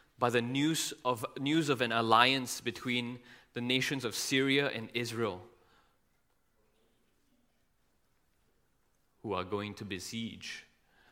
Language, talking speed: English, 110 wpm